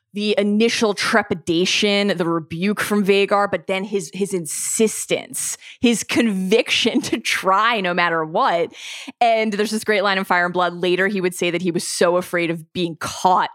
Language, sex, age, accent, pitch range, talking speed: English, female, 20-39, American, 175-230 Hz, 175 wpm